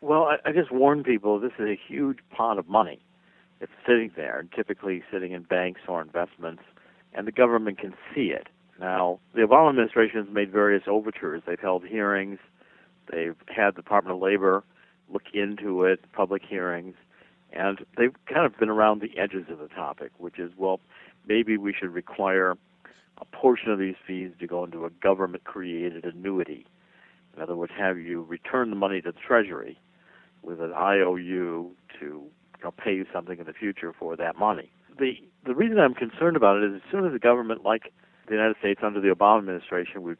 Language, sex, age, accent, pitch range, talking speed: English, male, 60-79, American, 90-110 Hz, 190 wpm